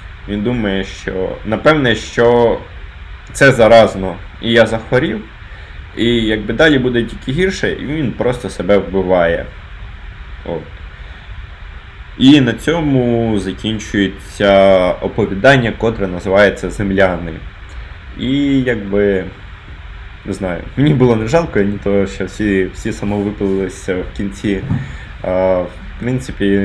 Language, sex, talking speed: Ukrainian, male, 110 wpm